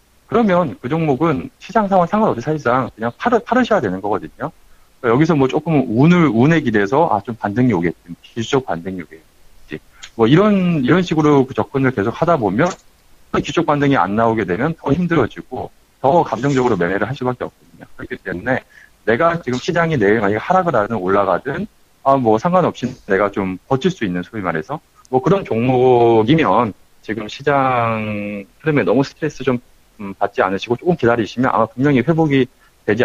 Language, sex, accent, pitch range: Korean, male, native, 105-155 Hz